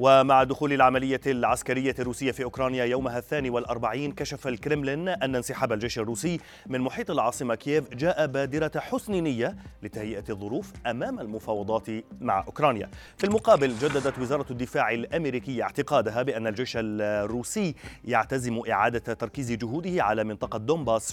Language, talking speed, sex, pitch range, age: Arabic, 135 wpm, male, 115-150 Hz, 30-49